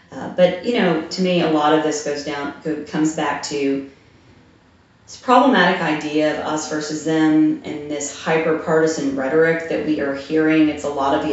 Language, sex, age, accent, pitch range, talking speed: English, female, 30-49, American, 145-175 Hz, 185 wpm